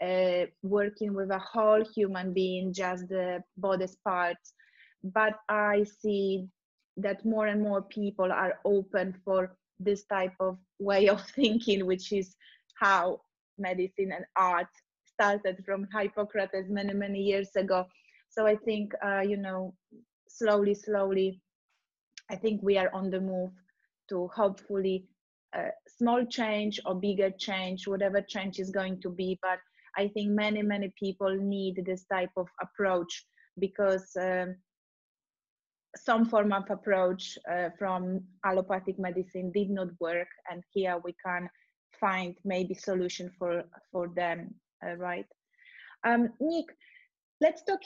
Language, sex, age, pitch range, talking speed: English, female, 20-39, 185-205 Hz, 140 wpm